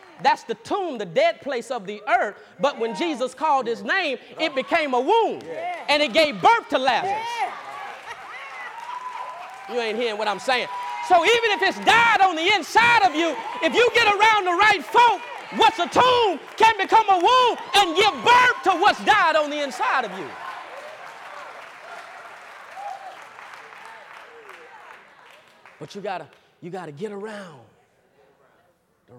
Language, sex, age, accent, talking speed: English, male, 30-49, American, 150 wpm